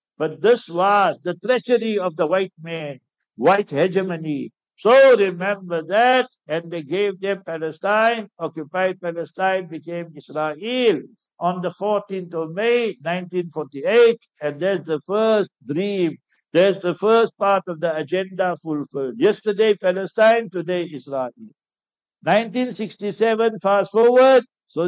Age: 60-79